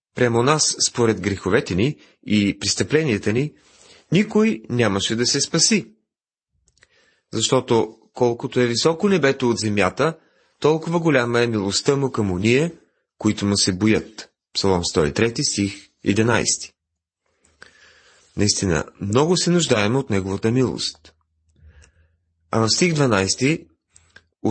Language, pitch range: Bulgarian, 105-145 Hz